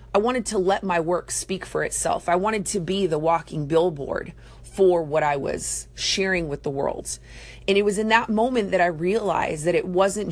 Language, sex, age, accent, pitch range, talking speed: English, female, 30-49, American, 160-195 Hz, 210 wpm